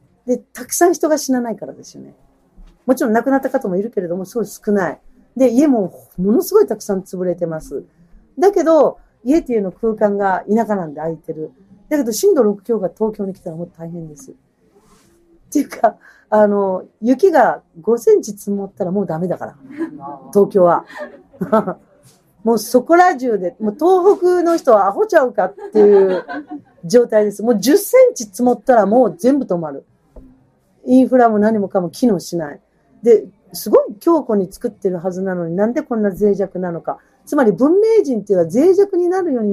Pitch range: 185-265 Hz